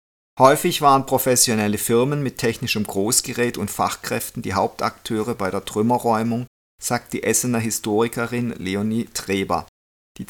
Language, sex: German, male